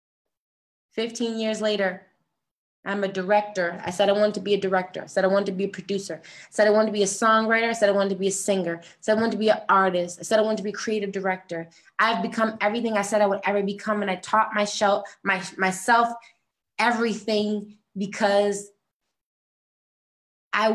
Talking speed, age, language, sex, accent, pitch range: 205 wpm, 20-39, English, female, American, 195-225 Hz